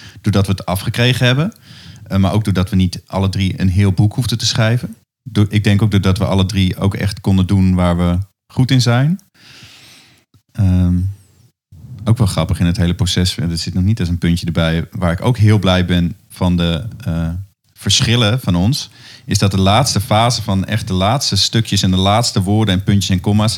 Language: Dutch